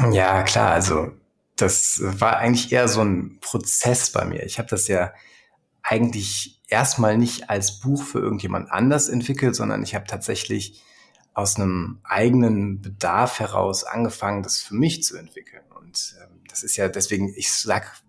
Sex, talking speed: male, 155 wpm